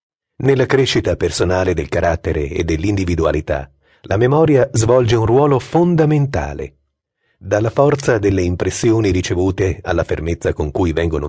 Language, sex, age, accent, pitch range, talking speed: Italian, male, 40-59, native, 90-145 Hz, 120 wpm